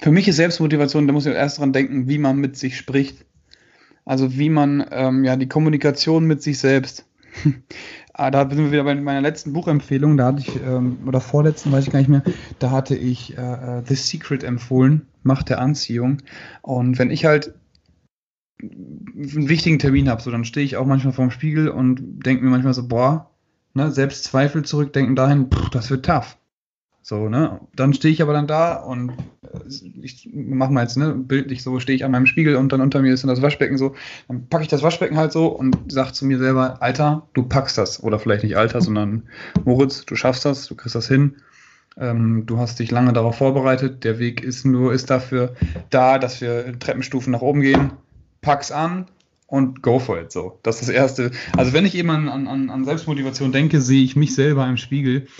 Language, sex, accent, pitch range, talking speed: German, male, German, 125-145 Hz, 205 wpm